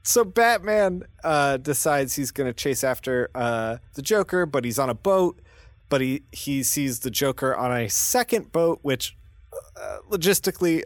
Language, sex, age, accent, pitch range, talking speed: English, male, 30-49, American, 105-155 Hz, 165 wpm